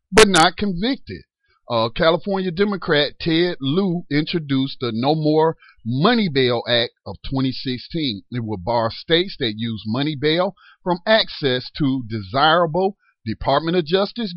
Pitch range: 120-175 Hz